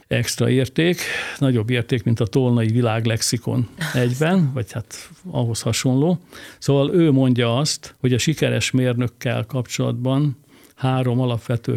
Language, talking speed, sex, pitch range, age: Hungarian, 120 wpm, male, 115-130 Hz, 60-79